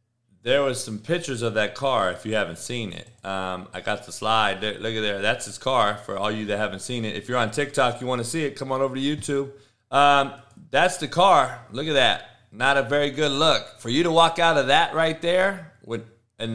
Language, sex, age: English, male, 30-49